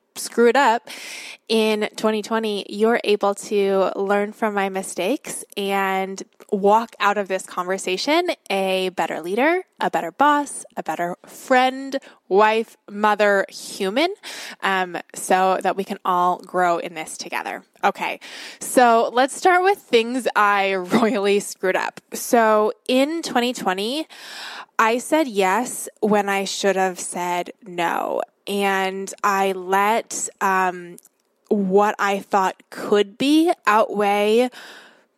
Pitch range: 195-245 Hz